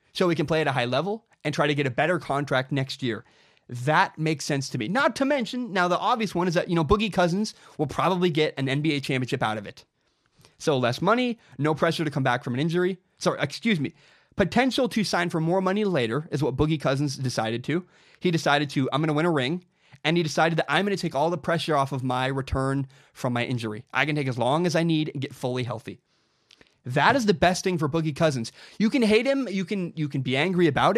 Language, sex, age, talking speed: English, male, 30-49, 250 wpm